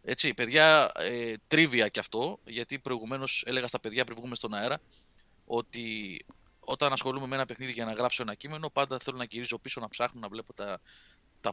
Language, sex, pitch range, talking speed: Greek, male, 115-150 Hz, 185 wpm